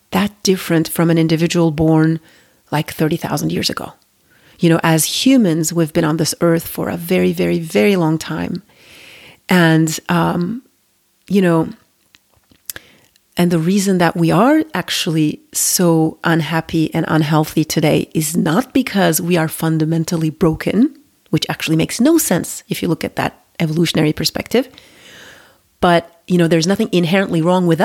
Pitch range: 160-180 Hz